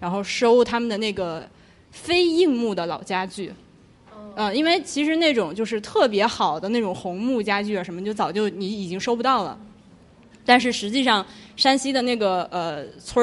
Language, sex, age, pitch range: Chinese, female, 20-39, 200-270 Hz